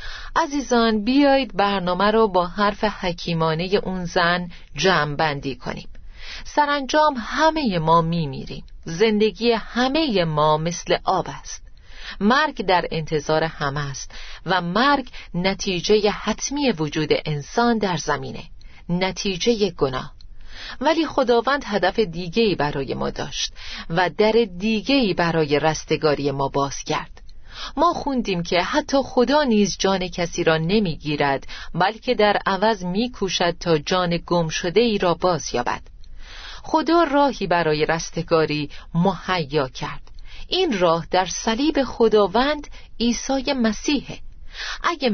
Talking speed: 115 wpm